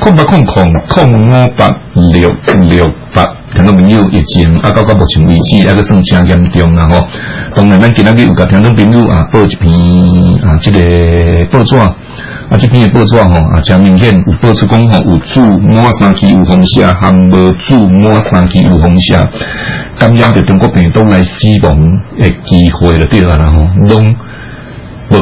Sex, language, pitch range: male, Chinese, 85-105 Hz